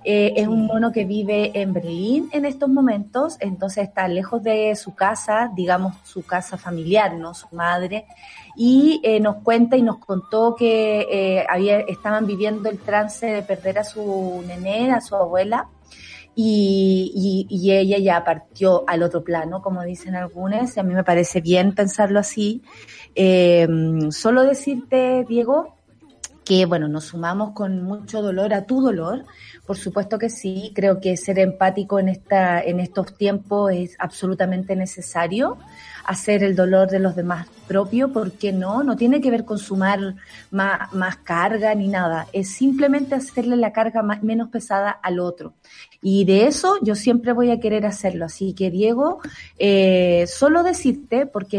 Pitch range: 185-225 Hz